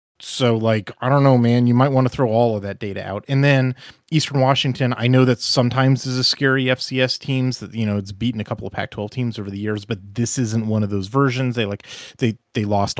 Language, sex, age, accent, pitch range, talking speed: English, male, 30-49, American, 105-130 Hz, 250 wpm